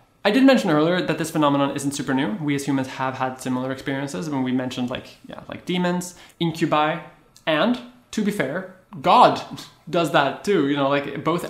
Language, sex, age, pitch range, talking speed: English, male, 20-39, 130-170 Hz, 195 wpm